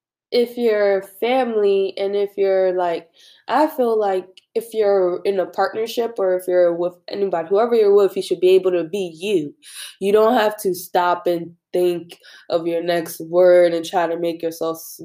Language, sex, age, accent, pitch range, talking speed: English, female, 20-39, American, 170-205 Hz, 185 wpm